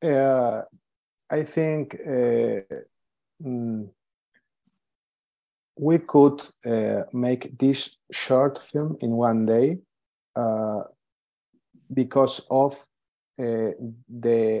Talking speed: 80 wpm